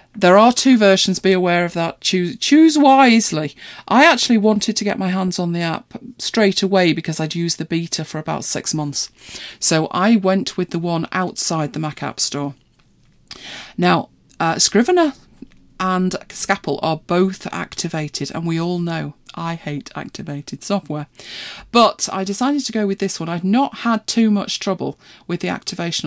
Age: 40-59